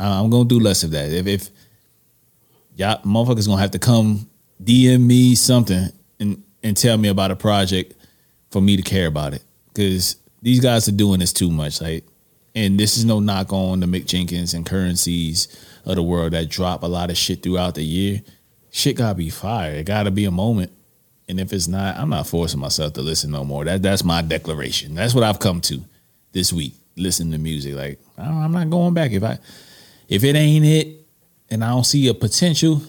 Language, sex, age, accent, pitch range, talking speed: English, male, 30-49, American, 90-120 Hz, 220 wpm